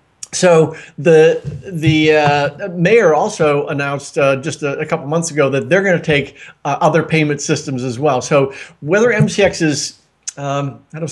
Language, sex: English, male